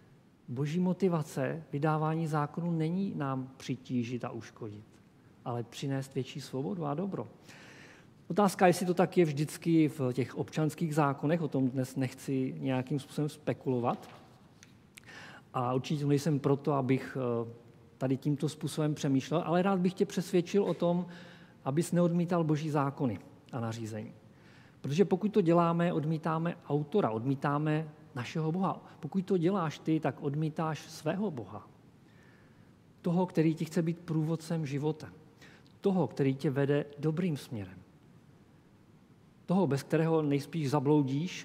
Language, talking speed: Czech, 130 wpm